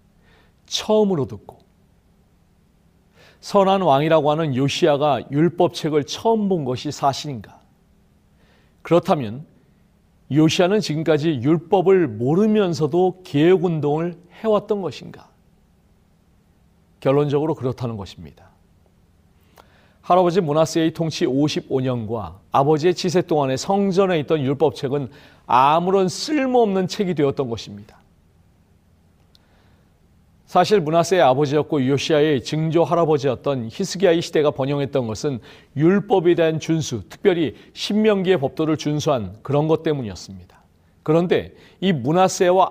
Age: 40-59